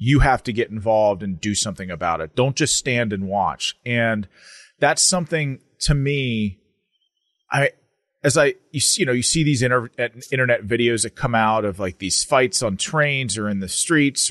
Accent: American